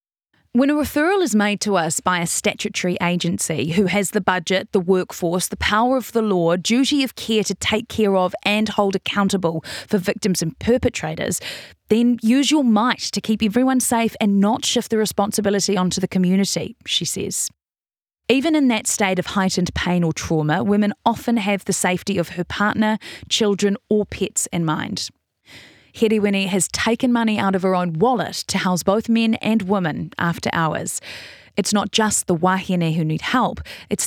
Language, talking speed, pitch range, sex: English, 180 wpm, 185-225 Hz, female